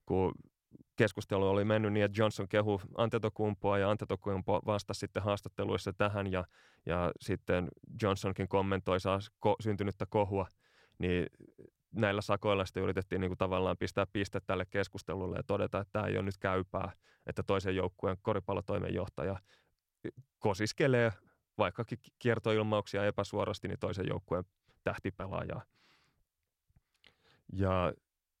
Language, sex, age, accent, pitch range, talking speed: Finnish, male, 30-49, native, 95-110 Hz, 120 wpm